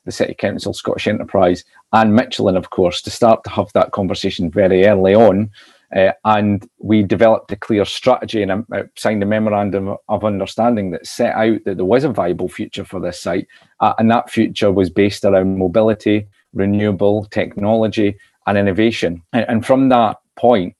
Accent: British